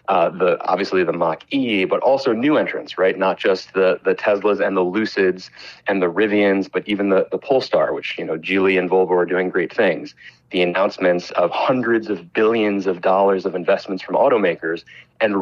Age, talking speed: 30-49, 195 wpm